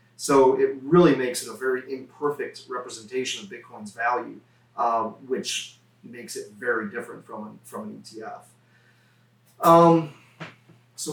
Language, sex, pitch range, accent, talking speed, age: English, male, 120-170 Hz, American, 130 wpm, 30-49